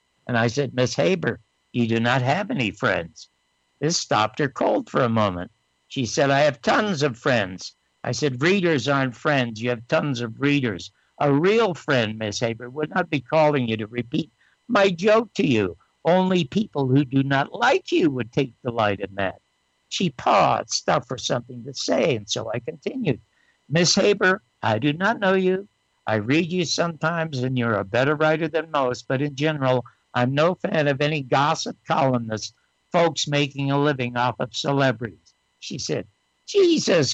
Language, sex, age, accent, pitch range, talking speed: English, male, 60-79, American, 125-170 Hz, 180 wpm